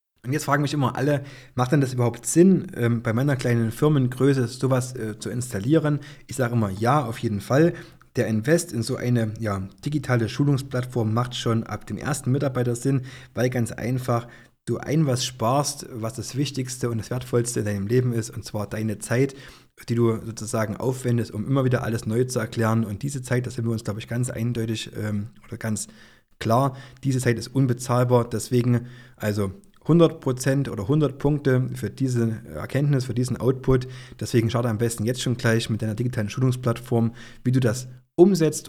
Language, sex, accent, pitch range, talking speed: German, male, German, 115-130 Hz, 180 wpm